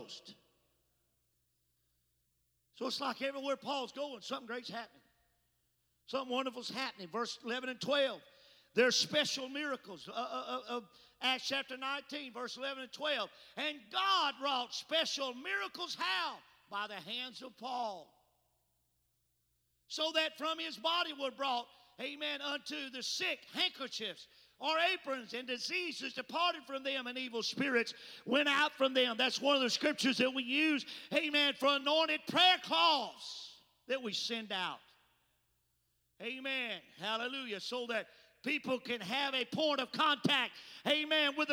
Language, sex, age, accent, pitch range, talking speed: English, male, 50-69, American, 240-300 Hz, 140 wpm